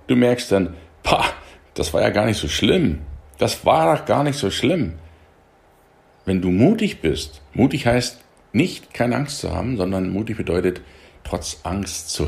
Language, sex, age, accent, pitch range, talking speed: German, male, 60-79, German, 75-120 Hz, 165 wpm